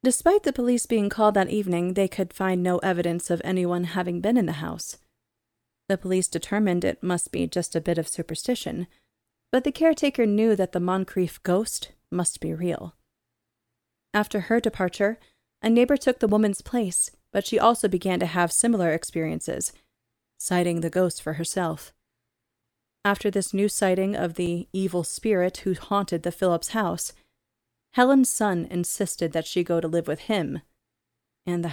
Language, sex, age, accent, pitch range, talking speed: English, female, 30-49, American, 165-205 Hz, 165 wpm